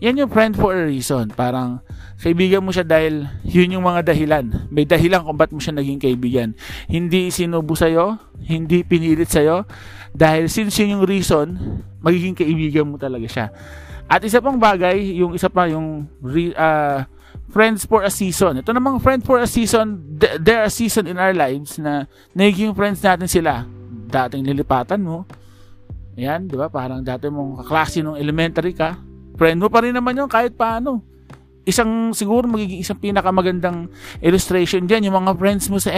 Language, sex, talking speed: Filipino, male, 170 wpm